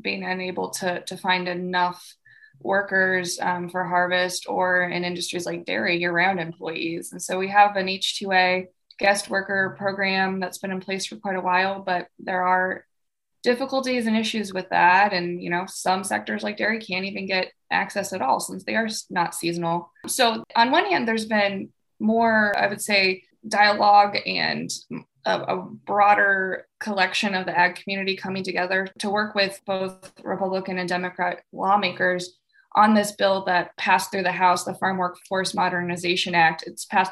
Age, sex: 20-39, female